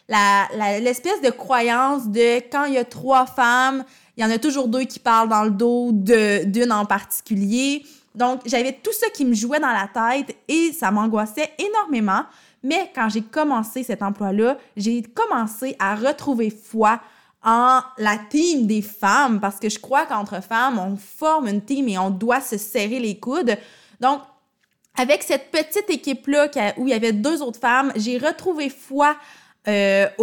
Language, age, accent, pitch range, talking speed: French, 20-39, Canadian, 225-275 Hz, 185 wpm